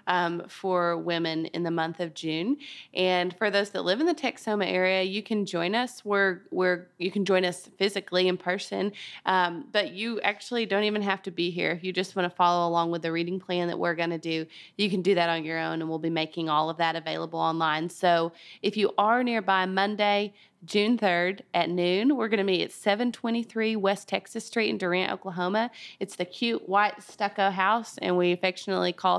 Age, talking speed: 20-39, 210 wpm